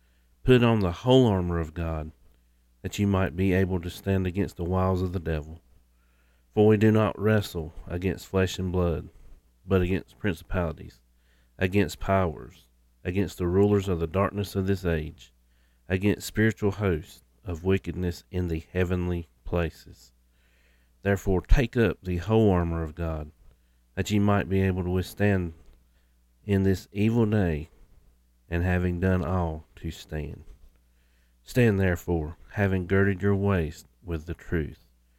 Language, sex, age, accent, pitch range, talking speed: English, male, 40-59, American, 75-95 Hz, 145 wpm